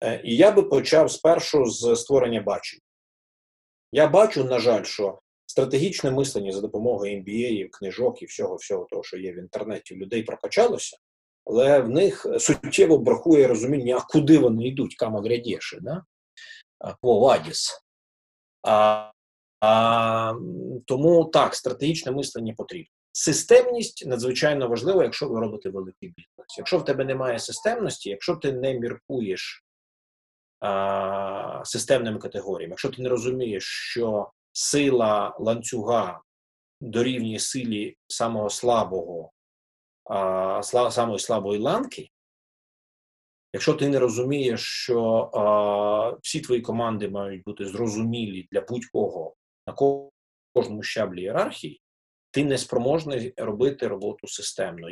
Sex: male